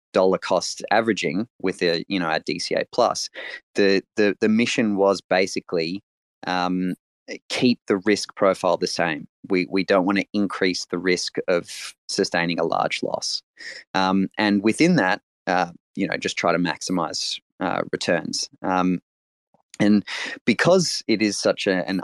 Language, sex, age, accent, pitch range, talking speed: English, male, 20-39, Australian, 90-105 Hz, 155 wpm